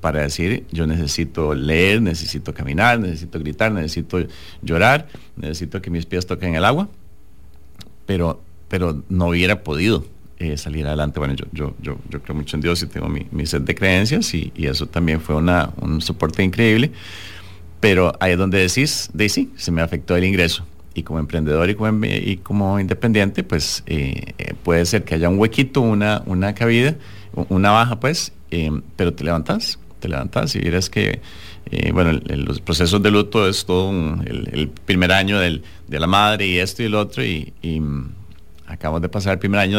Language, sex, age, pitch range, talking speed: Spanish, male, 40-59, 80-100 Hz, 185 wpm